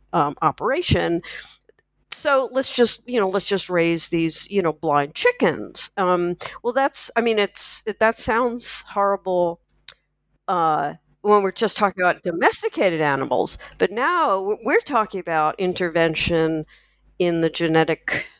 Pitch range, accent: 160-200 Hz, American